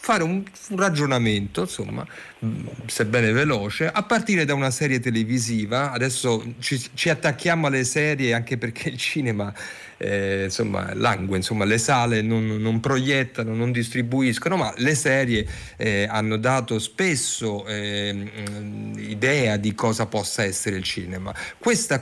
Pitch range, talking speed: 110-135 Hz, 140 wpm